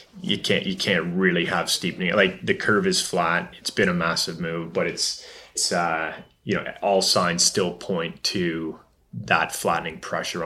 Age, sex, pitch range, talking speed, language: 30-49, male, 90-110 Hz, 180 wpm, English